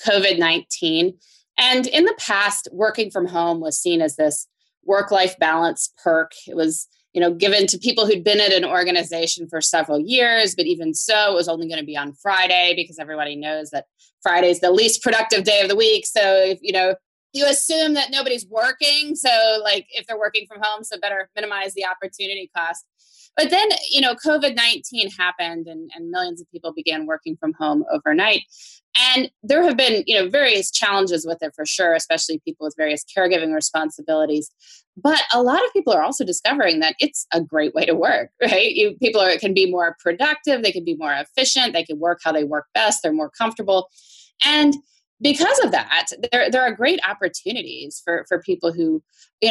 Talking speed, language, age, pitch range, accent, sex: 200 wpm, English, 20-39, 170-255 Hz, American, female